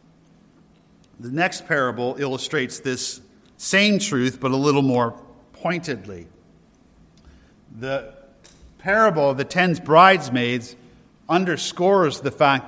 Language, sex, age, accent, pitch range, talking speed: English, male, 50-69, American, 125-160 Hz, 100 wpm